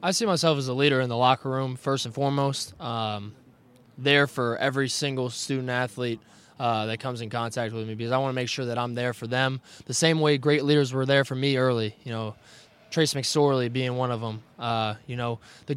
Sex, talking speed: male, 230 wpm